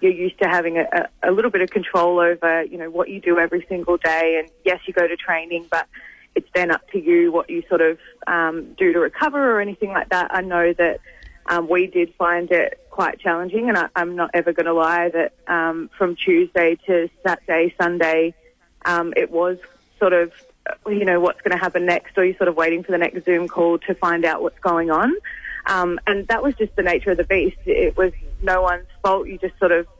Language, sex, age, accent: English, female, 20-39, Australian